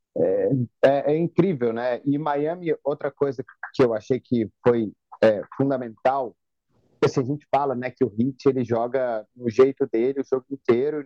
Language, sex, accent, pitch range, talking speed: Portuguese, male, Brazilian, 125-160 Hz, 180 wpm